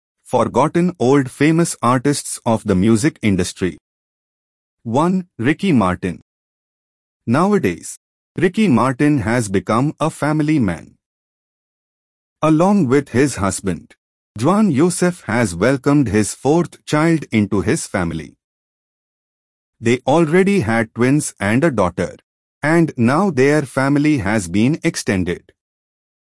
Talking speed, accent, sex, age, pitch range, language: 105 wpm, Indian, male, 30-49, 110-165 Hz, English